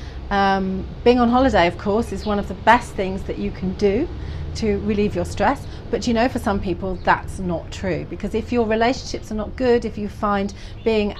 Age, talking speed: 40-59, 215 wpm